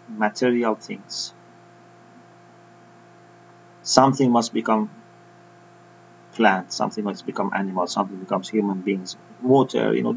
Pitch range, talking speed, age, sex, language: 120-175 Hz, 100 wpm, 30-49, male, English